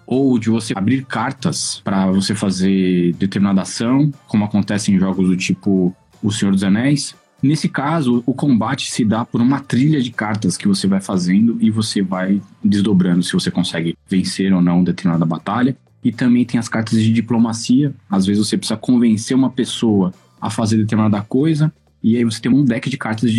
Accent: Brazilian